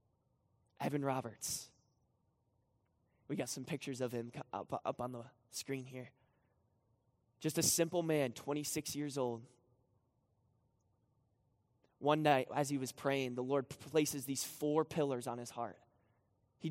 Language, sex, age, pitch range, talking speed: English, male, 20-39, 120-150 Hz, 135 wpm